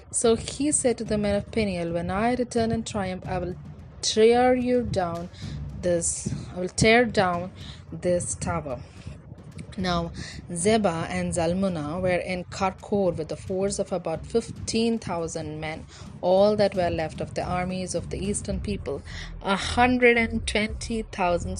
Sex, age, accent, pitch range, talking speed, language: female, 30-49, Indian, 175-220 Hz, 155 wpm, English